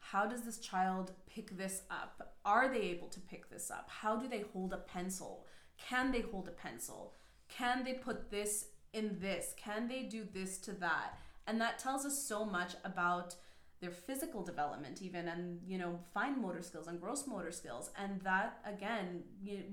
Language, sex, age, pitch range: English, female, 20-39, 190-230 Hz